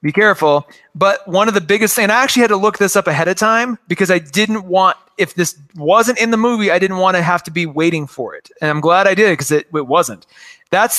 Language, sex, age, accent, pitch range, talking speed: English, male, 30-49, American, 175-225 Hz, 260 wpm